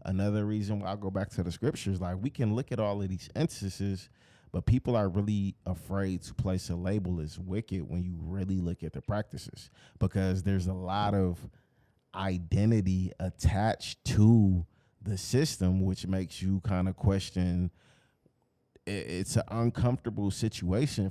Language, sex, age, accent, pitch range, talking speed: English, male, 30-49, American, 95-130 Hz, 160 wpm